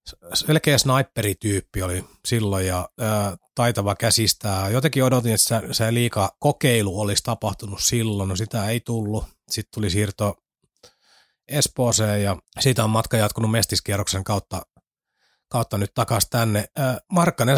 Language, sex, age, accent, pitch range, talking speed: Finnish, male, 30-49, native, 105-125 Hz, 135 wpm